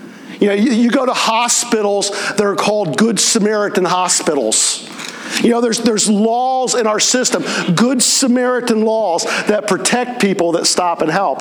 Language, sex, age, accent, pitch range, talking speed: English, male, 50-69, American, 175-235 Hz, 165 wpm